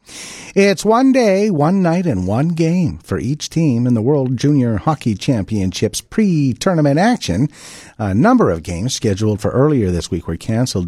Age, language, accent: 50-69, English, American